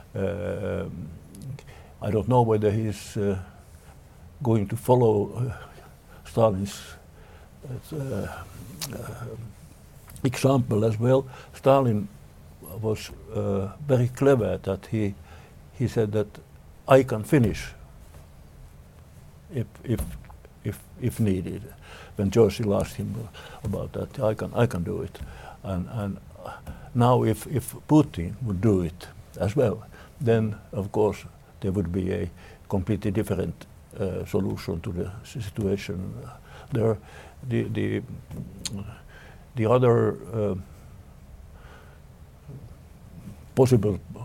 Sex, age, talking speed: male, 60-79, 110 wpm